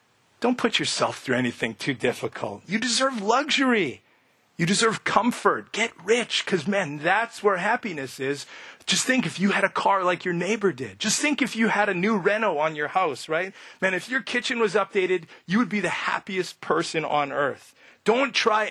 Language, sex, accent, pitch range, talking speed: English, male, American, 140-215 Hz, 190 wpm